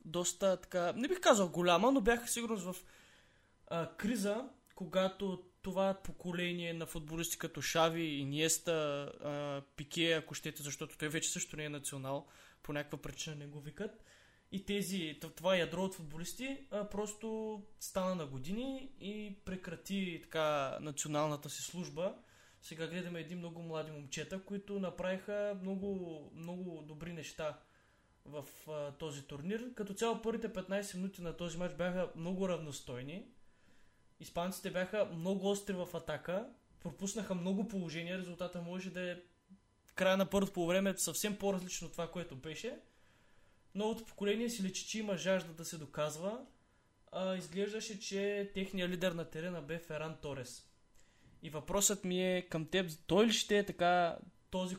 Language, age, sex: Bulgarian, 20-39, male